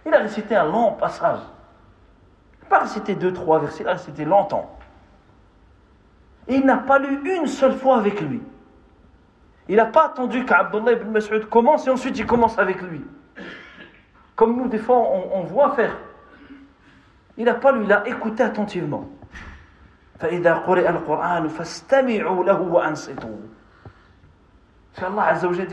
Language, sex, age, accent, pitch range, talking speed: French, male, 50-69, French, 145-225 Hz, 135 wpm